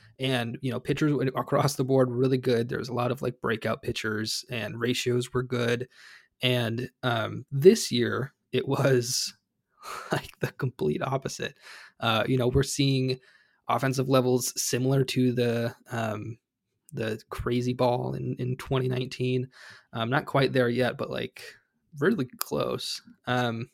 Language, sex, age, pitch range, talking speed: English, male, 20-39, 125-140 Hz, 150 wpm